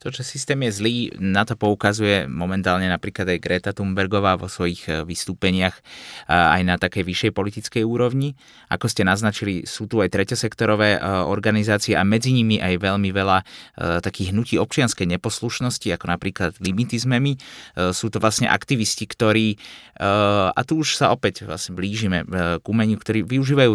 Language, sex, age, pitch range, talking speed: Slovak, male, 30-49, 95-120 Hz, 150 wpm